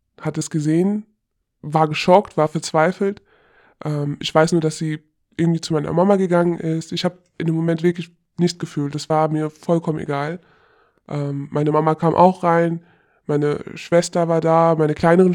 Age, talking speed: 20-39, 170 wpm